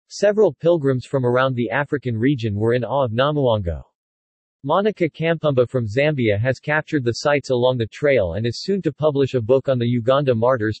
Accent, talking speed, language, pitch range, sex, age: American, 190 wpm, English, 120-150 Hz, male, 40-59